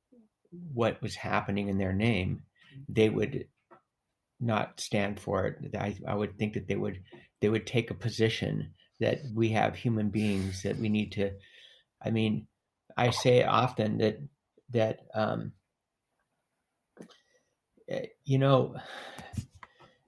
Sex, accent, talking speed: male, American, 130 wpm